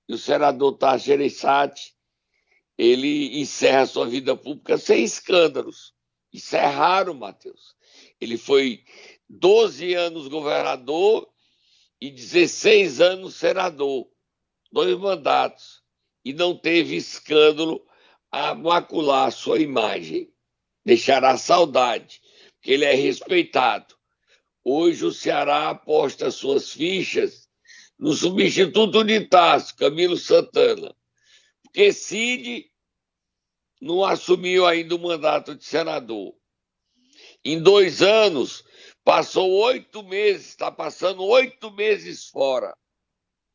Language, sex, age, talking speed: Portuguese, male, 60-79, 100 wpm